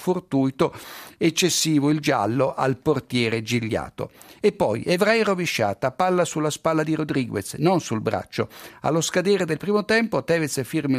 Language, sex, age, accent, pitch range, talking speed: Italian, male, 60-79, native, 125-165 Hz, 140 wpm